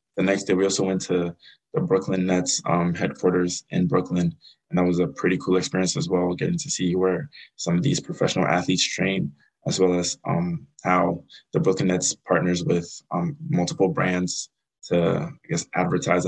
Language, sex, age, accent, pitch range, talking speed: English, male, 20-39, American, 90-100 Hz, 175 wpm